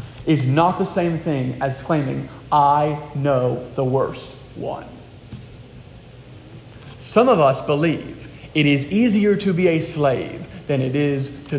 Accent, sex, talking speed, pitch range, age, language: American, male, 140 wpm, 135-190 Hz, 30-49, English